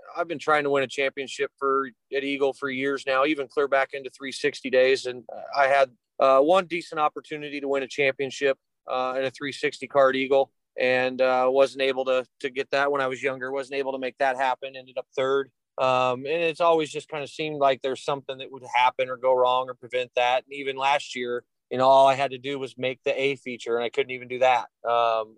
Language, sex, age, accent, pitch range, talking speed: English, male, 30-49, American, 125-140 Hz, 240 wpm